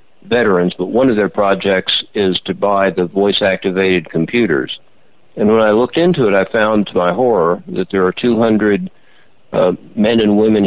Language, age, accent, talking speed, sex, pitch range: English, 60-79, American, 175 wpm, male, 95-110 Hz